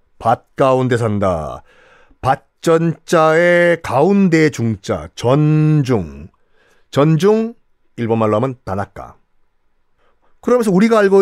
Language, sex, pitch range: Korean, male, 125-200 Hz